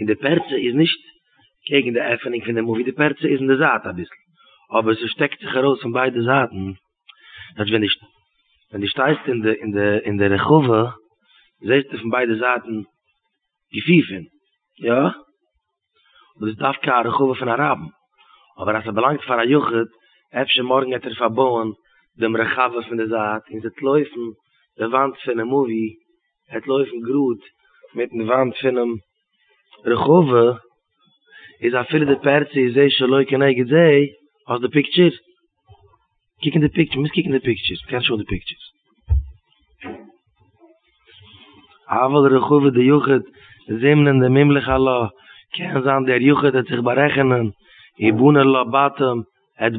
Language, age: English, 30-49